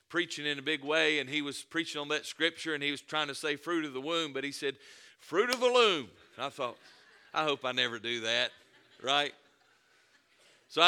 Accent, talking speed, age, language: American, 215 wpm, 50-69, English